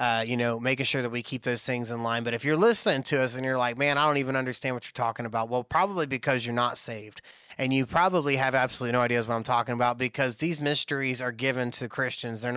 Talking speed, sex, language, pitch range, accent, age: 265 wpm, male, English, 120-135 Hz, American, 30-49